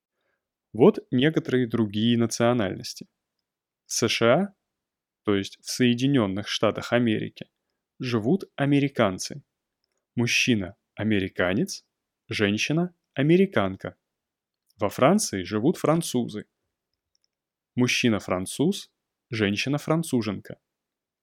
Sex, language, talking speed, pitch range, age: male, Russian, 75 wpm, 105-150 Hz, 20-39